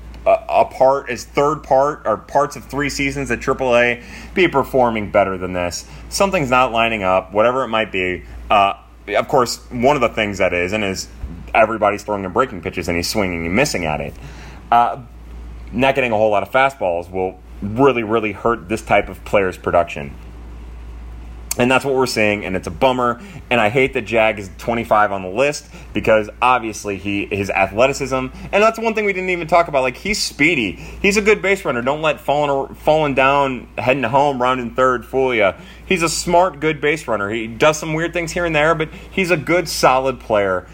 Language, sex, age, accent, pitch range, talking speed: English, male, 30-49, American, 105-160 Hz, 205 wpm